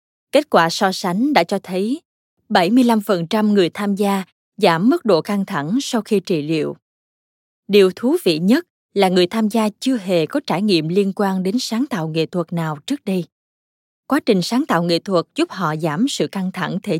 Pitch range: 165-210 Hz